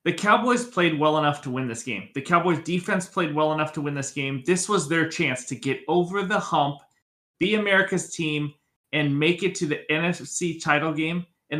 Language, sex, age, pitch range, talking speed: English, male, 30-49, 145-185 Hz, 205 wpm